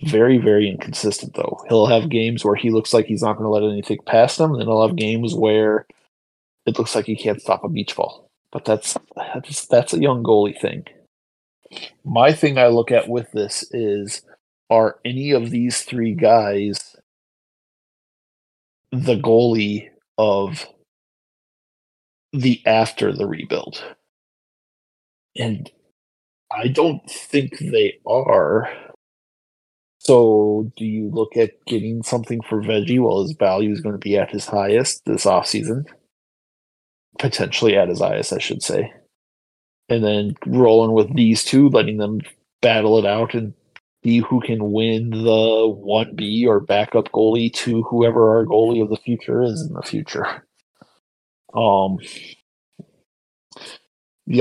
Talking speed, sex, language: 145 wpm, male, English